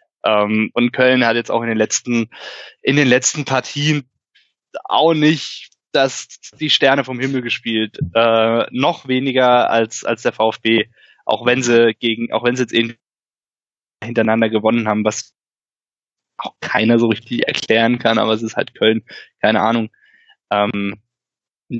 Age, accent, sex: 20-39, German, male